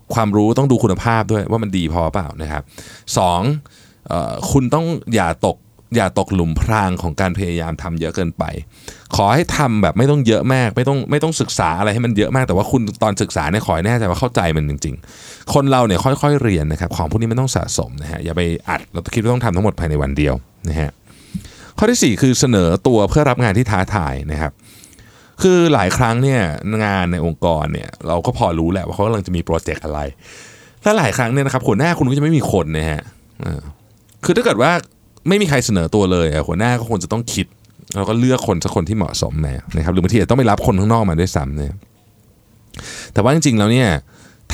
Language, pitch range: Thai, 85-120 Hz